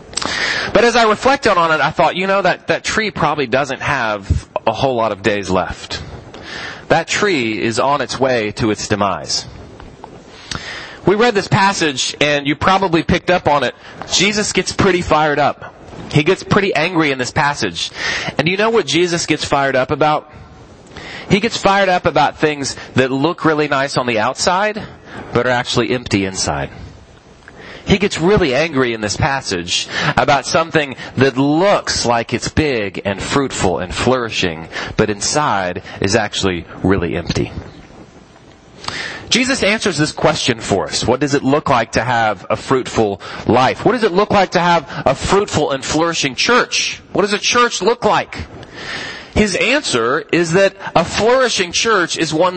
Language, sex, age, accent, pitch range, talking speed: English, male, 30-49, American, 120-185 Hz, 170 wpm